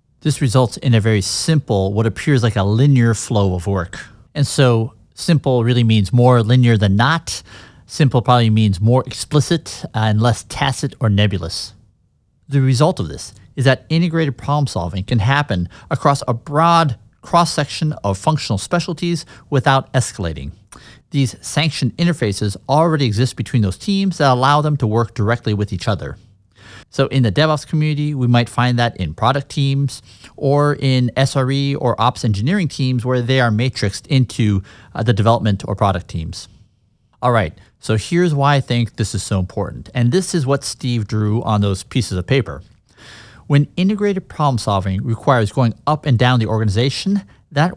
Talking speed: 170 wpm